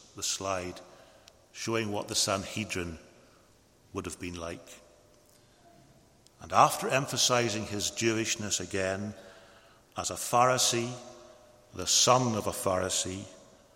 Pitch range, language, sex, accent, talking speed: 95-120 Hz, English, male, British, 105 wpm